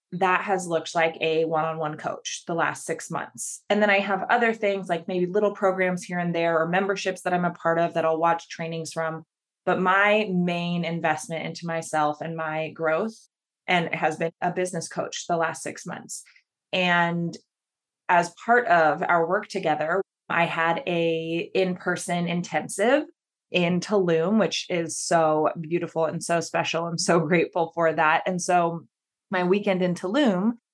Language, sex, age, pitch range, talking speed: English, female, 20-39, 165-190 Hz, 170 wpm